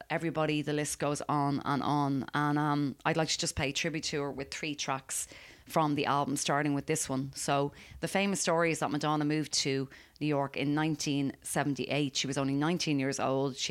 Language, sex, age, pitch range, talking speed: English, female, 30-49, 140-160 Hz, 205 wpm